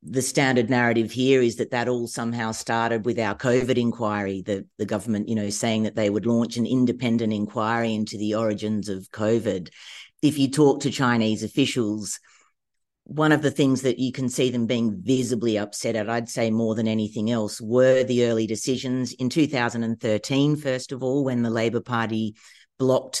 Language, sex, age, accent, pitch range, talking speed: English, female, 40-59, Australian, 110-125 Hz, 185 wpm